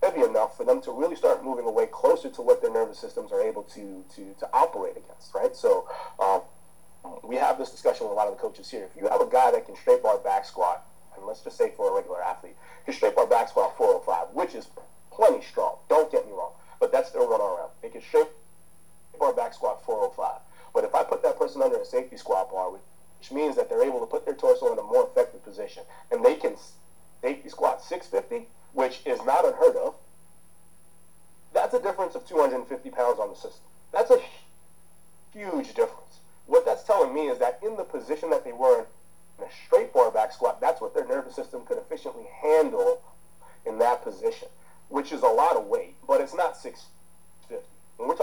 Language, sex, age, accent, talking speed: English, male, 30-49, American, 215 wpm